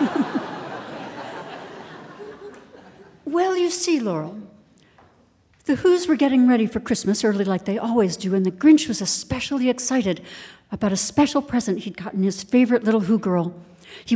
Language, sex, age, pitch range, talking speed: English, female, 60-79, 185-235 Hz, 145 wpm